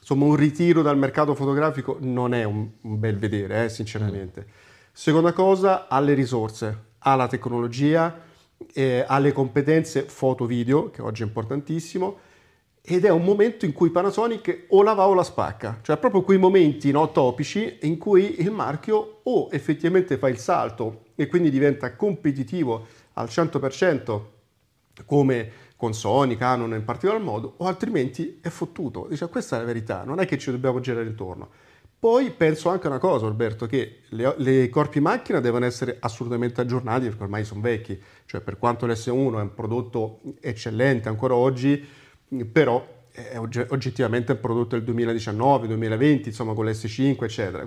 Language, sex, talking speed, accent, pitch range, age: Italian, male, 165 wpm, native, 115-155 Hz, 40-59